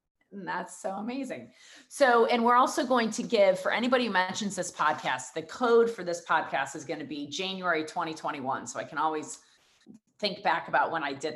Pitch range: 160-205 Hz